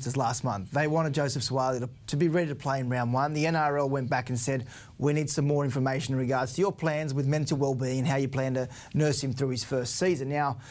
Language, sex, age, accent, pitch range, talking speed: English, male, 20-39, Australian, 120-145 Hz, 260 wpm